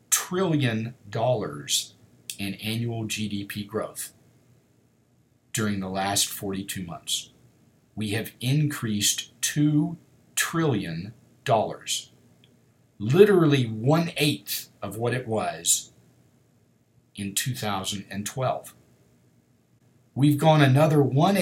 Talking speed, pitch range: 85 wpm, 110-155 Hz